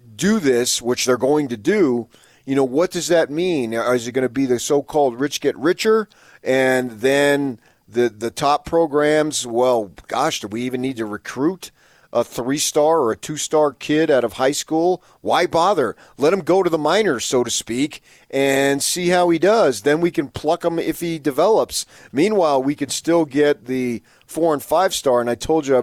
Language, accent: English, American